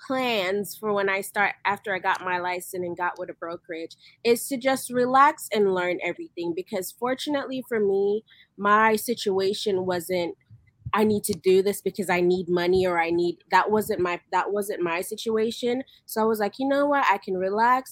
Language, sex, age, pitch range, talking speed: English, female, 20-39, 180-220 Hz, 195 wpm